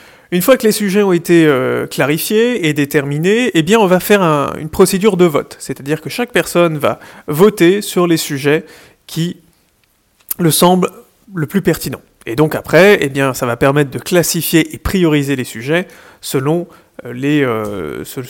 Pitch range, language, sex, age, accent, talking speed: 145-185 Hz, French, male, 30-49, French, 155 wpm